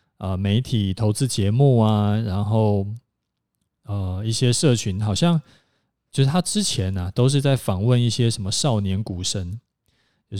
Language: Chinese